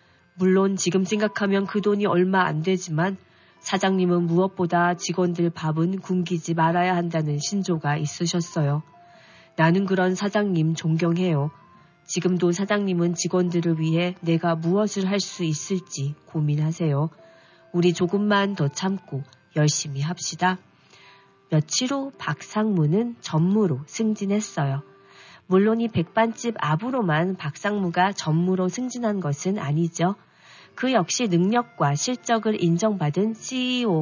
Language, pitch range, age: Korean, 165-215 Hz, 40-59